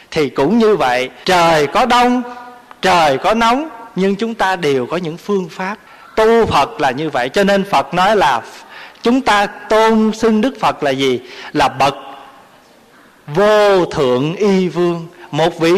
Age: 20-39